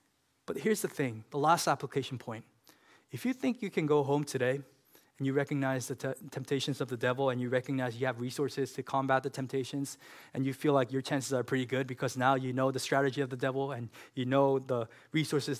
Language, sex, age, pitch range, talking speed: English, male, 20-39, 130-150 Hz, 225 wpm